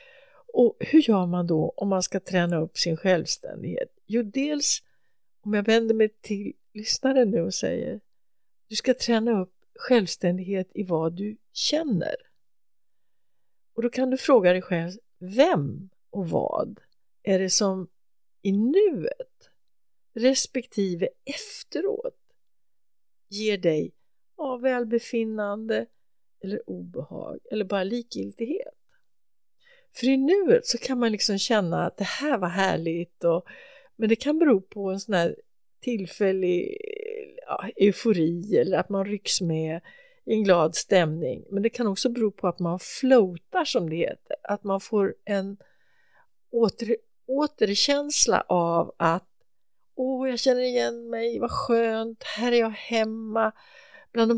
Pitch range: 190-255 Hz